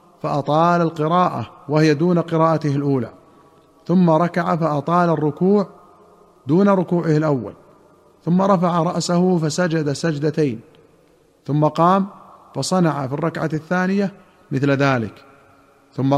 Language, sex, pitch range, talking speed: Arabic, male, 150-175 Hz, 100 wpm